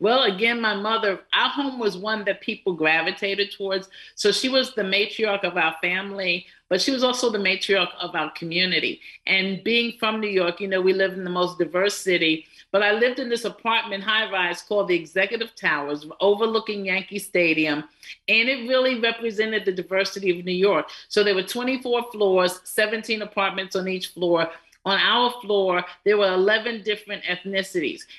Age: 50-69